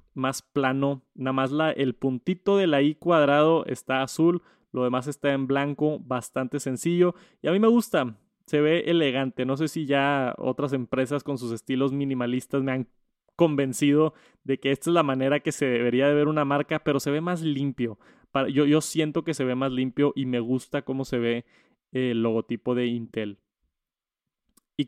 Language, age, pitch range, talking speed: Spanish, 20-39, 130-160 Hz, 185 wpm